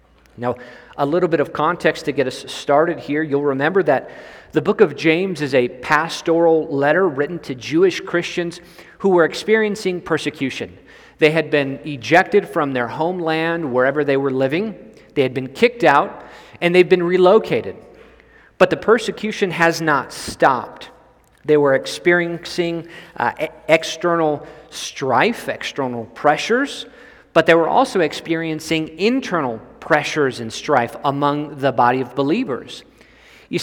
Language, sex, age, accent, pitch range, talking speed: English, male, 40-59, American, 140-175 Hz, 145 wpm